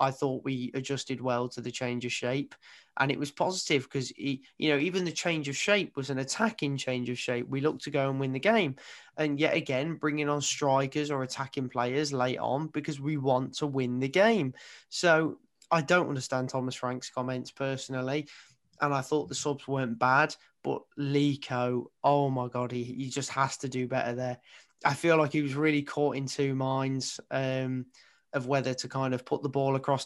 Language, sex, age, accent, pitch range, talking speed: English, male, 20-39, British, 130-145 Hz, 205 wpm